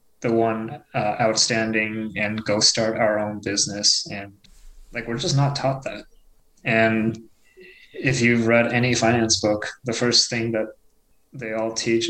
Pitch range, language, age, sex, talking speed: 110-125 Hz, English, 20-39, male, 155 wpm